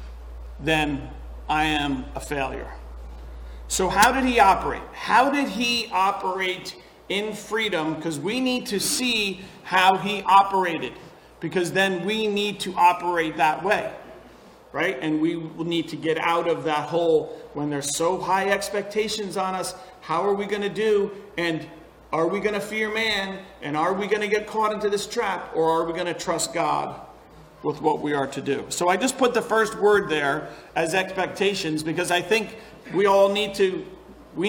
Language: English